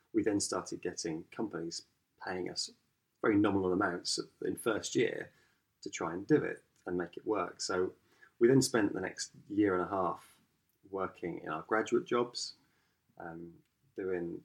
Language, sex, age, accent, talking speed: English, male, 20-39, British, 160 wpm